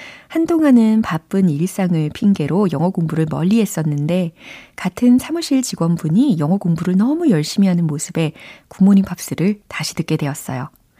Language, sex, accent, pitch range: Korean, female, native, 155-210 Hz